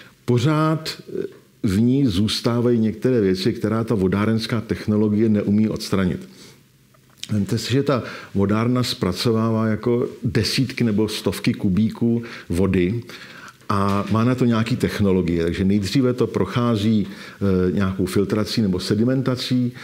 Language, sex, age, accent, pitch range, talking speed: Czech, male, 50-69, native, 100-120 Hz, 115 wpm